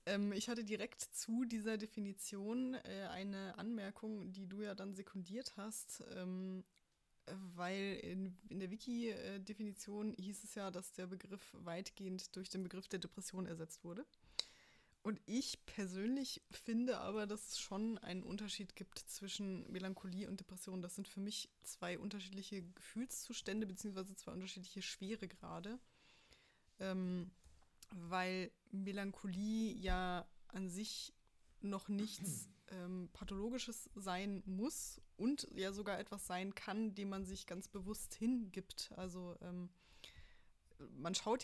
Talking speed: 125 wpm